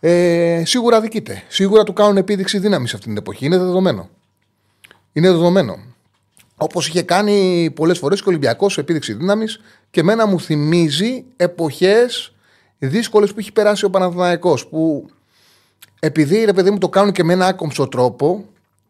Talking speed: 150 wpm